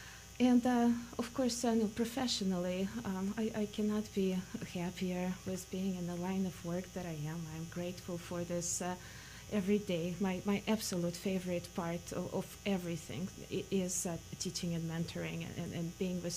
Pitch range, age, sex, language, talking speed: 175-205 Hz, 30-49, female, English, 170 wpm